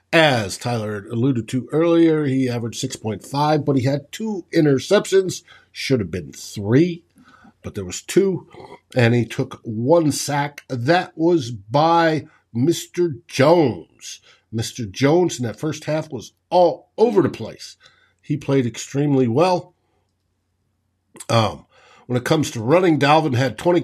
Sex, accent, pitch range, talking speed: male, American, 120-160 Hz, 140 wpm